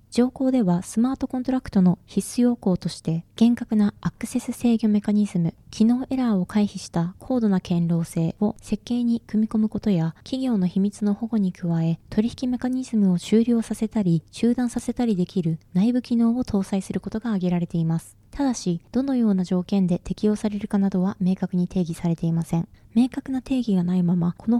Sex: female